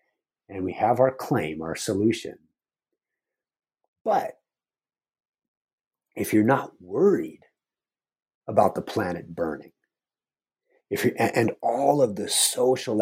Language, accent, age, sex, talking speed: English, American, 50-69, male, 105 wpm